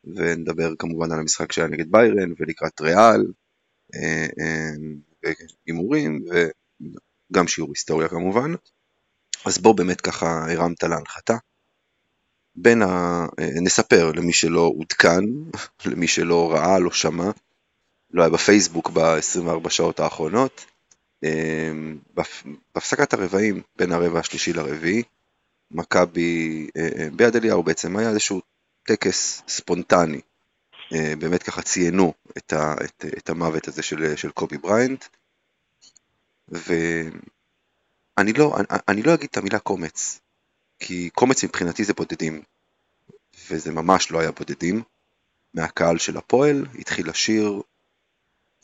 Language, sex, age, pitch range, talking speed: Hebrew, male, 30-49, 80-100 Hz, 110 wpm